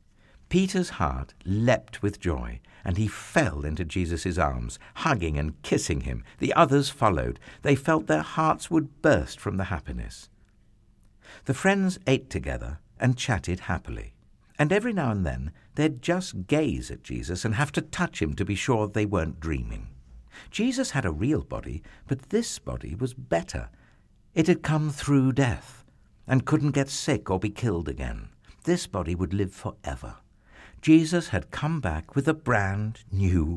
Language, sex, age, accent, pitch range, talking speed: English, male, 60-79, British, 90-145 Hz, 165 wpm